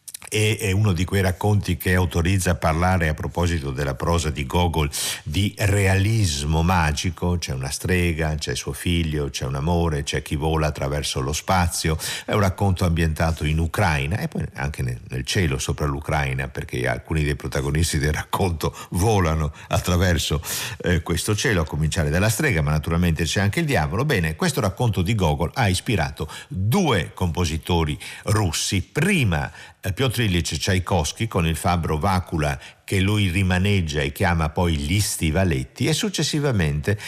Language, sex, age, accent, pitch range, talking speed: Italian, male, 50-69, native, 80-100 Hz, 155 wpm